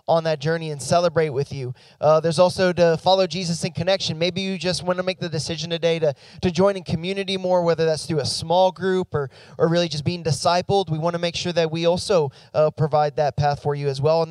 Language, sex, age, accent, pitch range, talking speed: English, male, 20-39, American, 155-185 Hz, 240 wpm